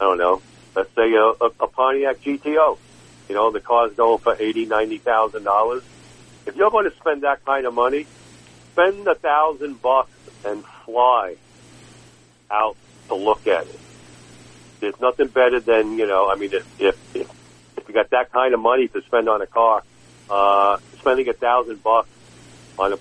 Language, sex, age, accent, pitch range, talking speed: English, male, 50-69, American, 100-140 Hz, 175 wpm